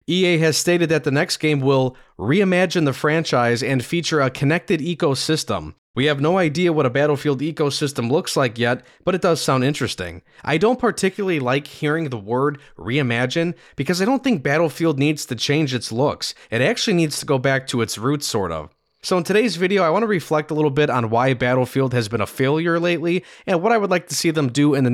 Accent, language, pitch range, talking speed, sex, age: American, English, 125-165 Hz, 220 wpm, male, 20-39